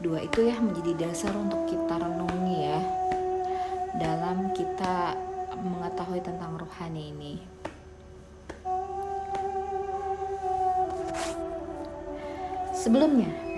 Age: 20-39